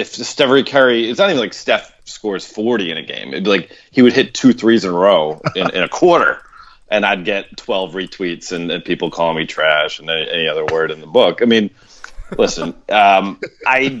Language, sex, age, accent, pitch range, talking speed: English, male, 30-49, American, 90-125 Hz, 225 wpm